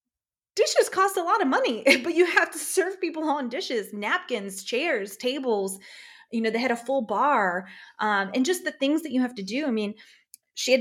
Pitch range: 195-270 Hz